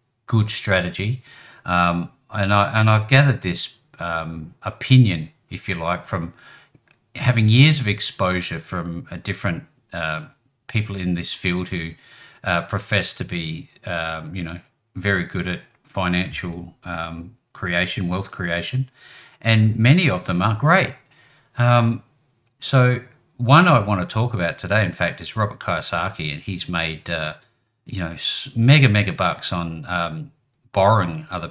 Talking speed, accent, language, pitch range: 145 wpm, Australian, English, 85-115 Hz